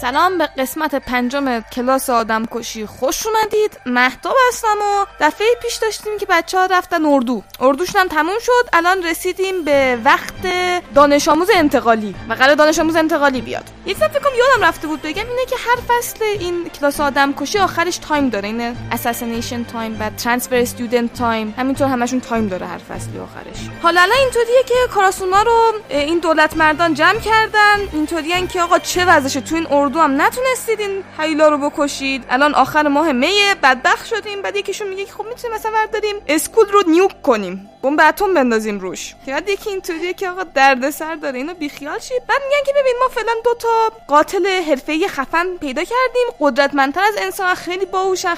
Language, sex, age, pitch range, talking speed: Persian, female, 20-39, 280-400 Hz, 175 wpm